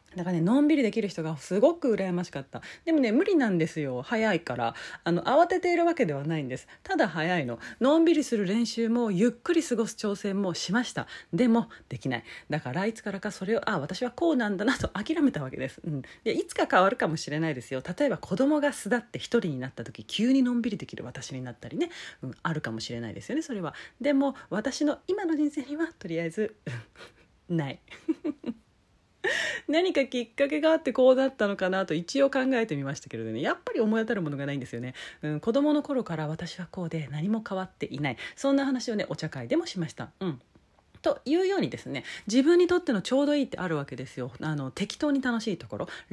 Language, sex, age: Japanese, female, 30-49